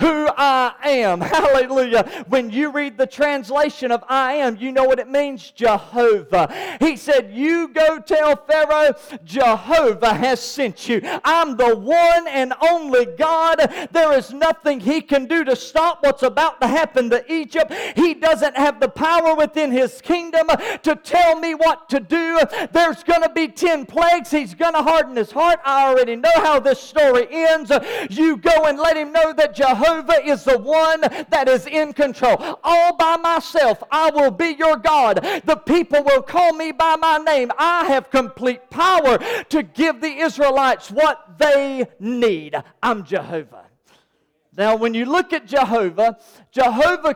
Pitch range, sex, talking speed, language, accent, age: 260-320 Hz, male, 170 wpm, English, American, 40-59